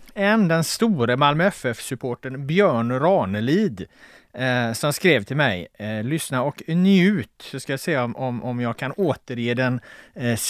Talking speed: 155 wpm